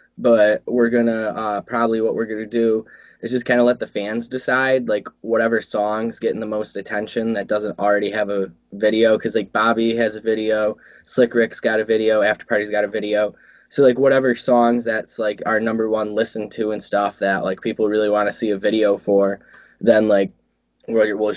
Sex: male